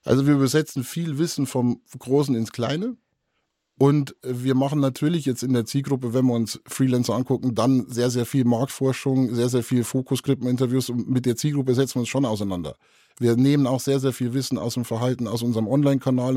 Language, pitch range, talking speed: German, 120-135 Hz, 200 wpm